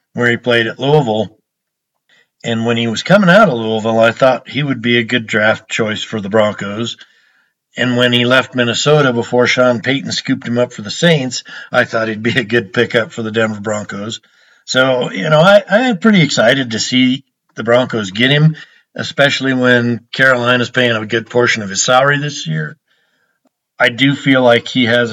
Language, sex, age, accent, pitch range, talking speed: English, male, 50-69, American, 115-130 Hz, 190 wpm